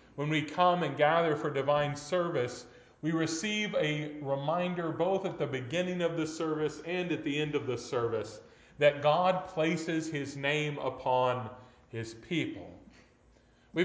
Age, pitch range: 40-59, 130-170 Hz